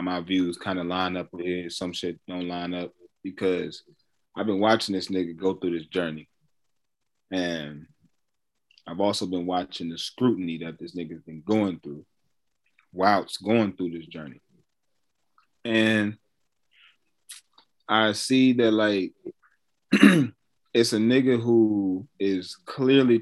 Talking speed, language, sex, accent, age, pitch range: 130 wpm, English, male, American, 20-39, 90-110 Hz